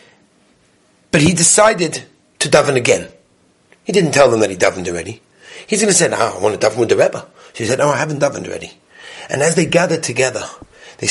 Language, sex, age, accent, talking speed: English, male, 30-49, British, 215 wpm